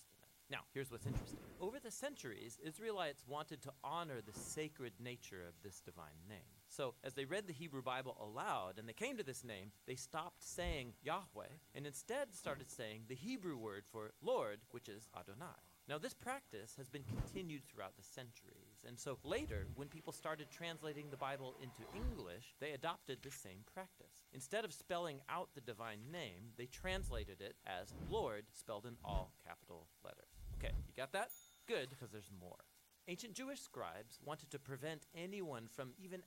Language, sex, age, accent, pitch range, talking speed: English, male, 40-59, American, 115-165 Hz, 175 wpm